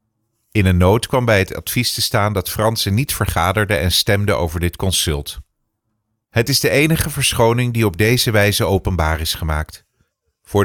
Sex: male